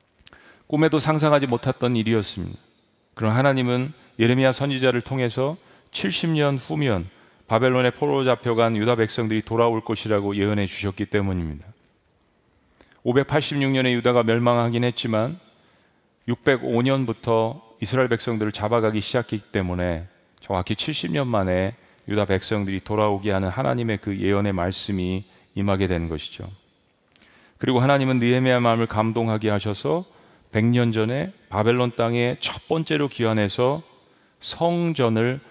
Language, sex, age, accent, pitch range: Korean, male, 40-59, native, 100-130 Hz